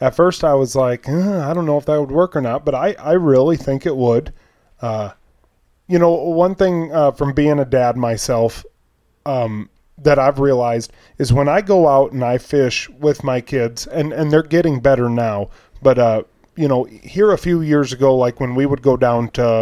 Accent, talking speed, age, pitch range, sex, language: American, 215 wpm, 30-49, 115-145 Hz, male, English